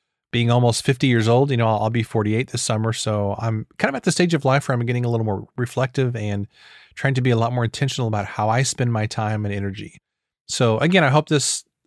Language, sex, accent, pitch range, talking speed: English, male, American, 110-140 Hz, 255 wpm